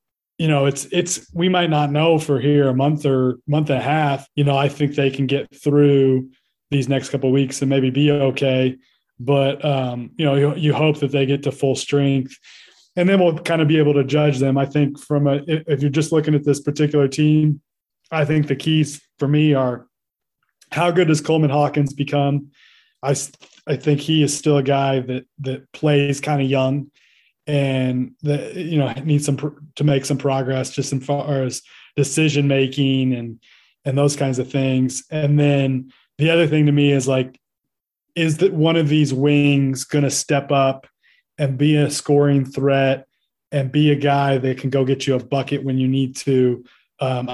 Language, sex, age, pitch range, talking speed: English, male, 20-39, 135-150 Hz, 200 wpm